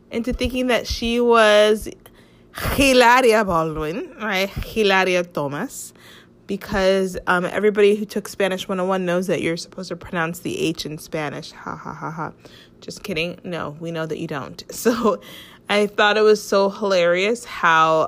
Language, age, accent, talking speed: English, 20-39, American, 165 wpm